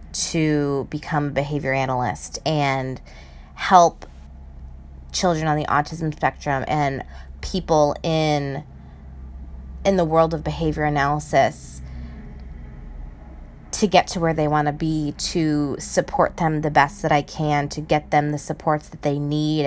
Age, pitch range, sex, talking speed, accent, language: 20-39, 135-185 Hz, female, 135 wpm, American, English